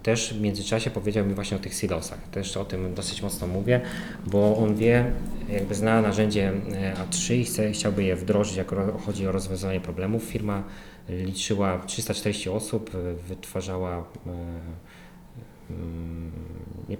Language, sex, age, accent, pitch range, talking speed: Polish, male, 20-39, native, 95-110 Hz, 135 wpm